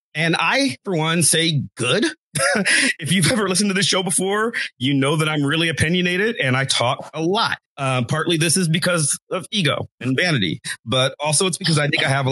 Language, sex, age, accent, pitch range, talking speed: English, male, 40-59, American, 135-175 Hz, 210 wpm